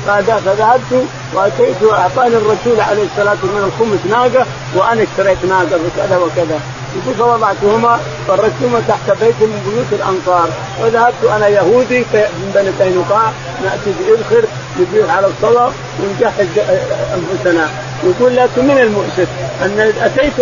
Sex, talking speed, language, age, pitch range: male, 120 wpm, Arabic, 50-69, 175-225 Hz